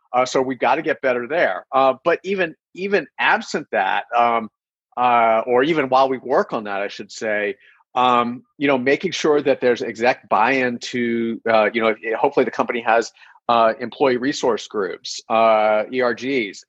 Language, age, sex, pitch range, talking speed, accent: English, 40-59, male, 110-130 Hz, 175 wpm, American